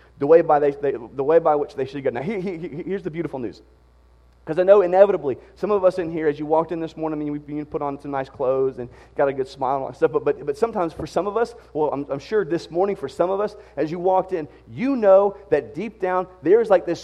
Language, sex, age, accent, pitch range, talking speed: English, male, 30-49, American, 150-210 Hz, 290 wpm